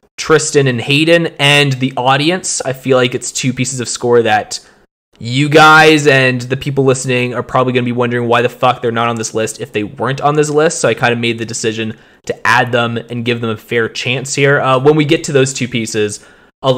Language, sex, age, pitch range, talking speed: English, male, 20-39, 120-155 Hz, 240 wpm